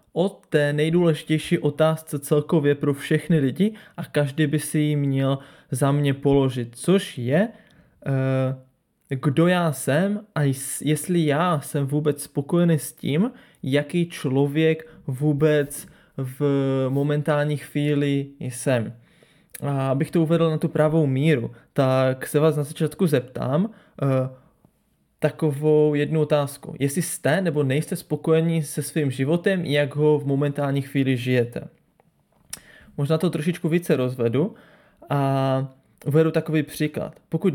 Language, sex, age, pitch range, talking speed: Czech, male, 20-39, 140-165 Hz, 125 wpm